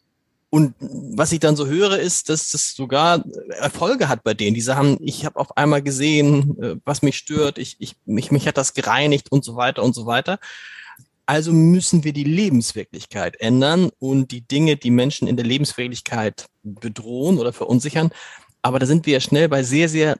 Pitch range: 135-170 Hz